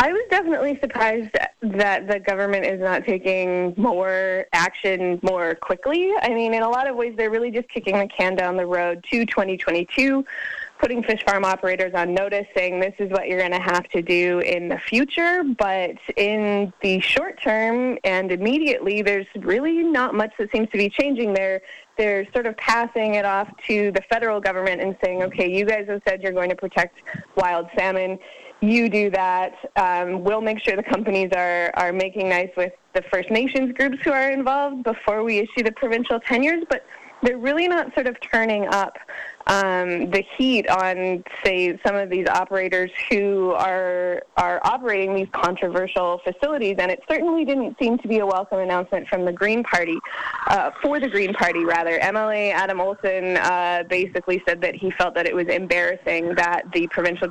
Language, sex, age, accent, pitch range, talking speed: English, female, 20-39, American, 185-230 Hz, 185 wpm